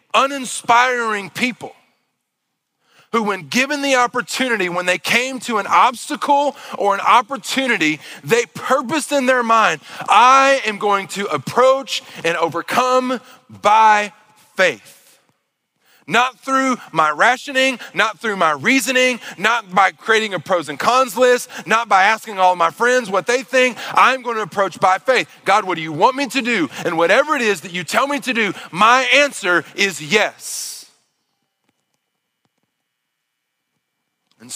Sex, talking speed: male, 145 wpm